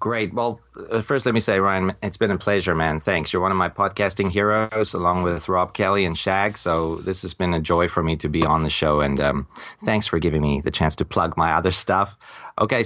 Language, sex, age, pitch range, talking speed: English, male, 30-49, 85-100 Hz, 245 wpm